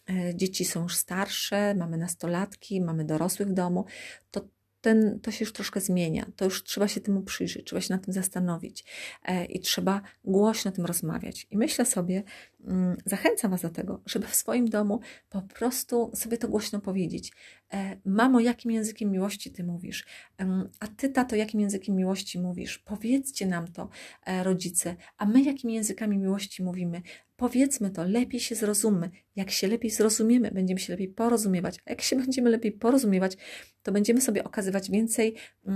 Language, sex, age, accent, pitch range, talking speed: Polish, female, 30-49, native, 185-220 Hz, 160 wpm